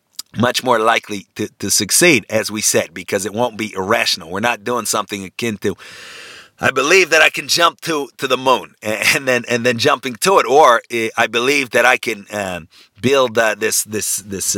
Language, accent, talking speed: English, American, 210 wpm